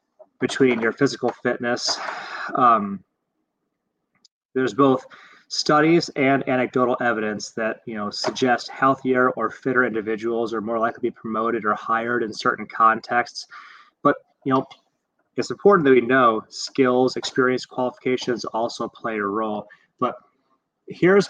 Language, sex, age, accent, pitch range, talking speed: English, male, 30-49, American, 115-135 Hz, 130 wpm